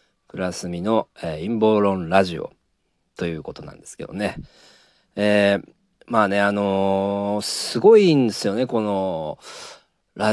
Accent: native